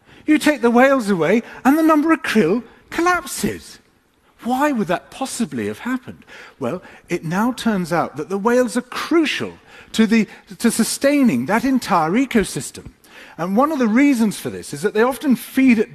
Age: 40-59